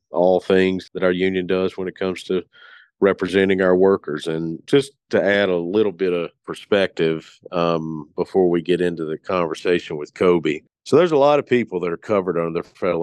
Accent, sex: American, male